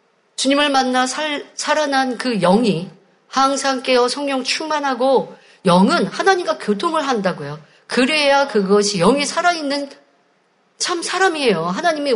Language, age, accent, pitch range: Korean, 50-69, native, 200-275 Hz